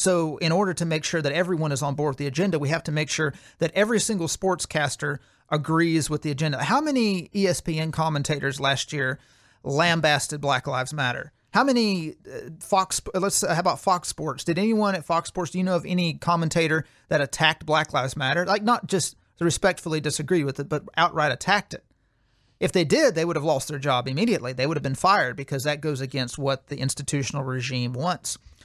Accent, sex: American, male